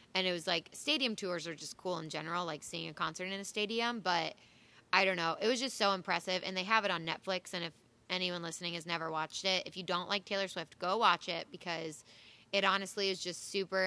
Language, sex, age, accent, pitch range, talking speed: English, female, 20-39, American, 165-195 Hz, 240 wpm